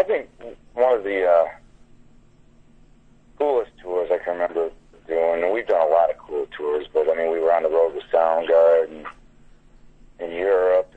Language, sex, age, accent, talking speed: English, male, 40-59, American, 185 wpm